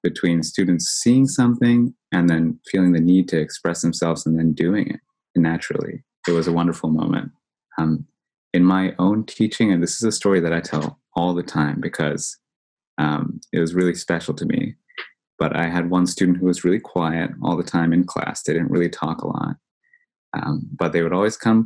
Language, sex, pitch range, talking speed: English, male, 80-95 Hz, 200 wpm